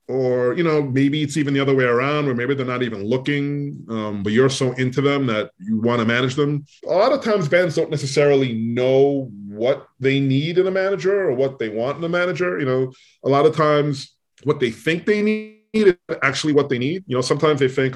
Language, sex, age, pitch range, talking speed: English, male, 30-49, 115-145 Hz, 235 wpm